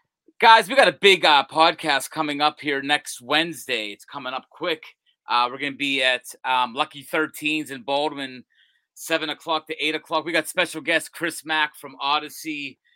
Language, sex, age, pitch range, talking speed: English, male, 30-49, 125-155 Hz, 185 wpm